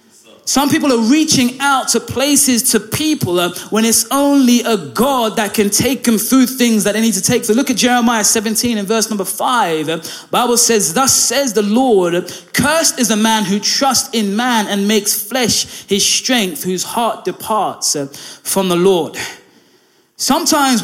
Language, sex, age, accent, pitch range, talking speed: English, male, 20-39, British, 205-250 Hz, 175 wpm